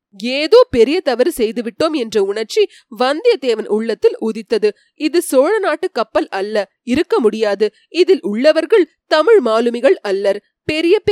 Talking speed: 115 wpm